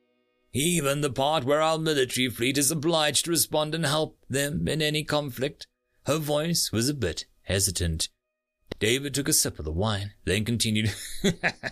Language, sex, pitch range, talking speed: English, male, 105-160 Hz, 165 wpm